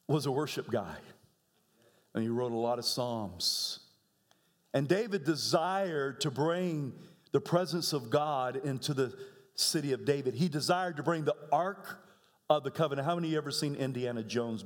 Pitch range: 135-190 Hz